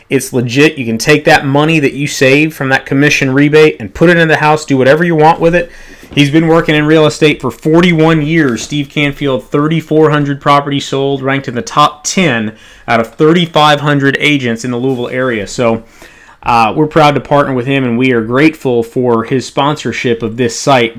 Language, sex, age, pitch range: English, male, 30-49, 125-150 Hz